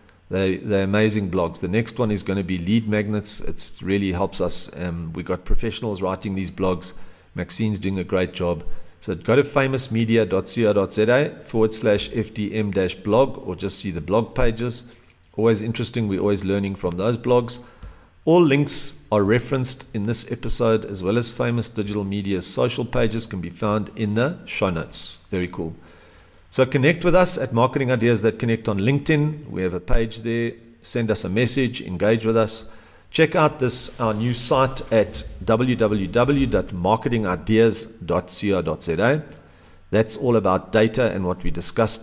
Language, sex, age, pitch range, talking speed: English, male, 50-69, 95-120 Hz, 165 wpm